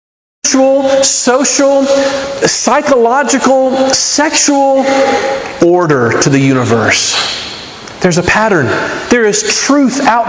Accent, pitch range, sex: American, 185-270 Hz, male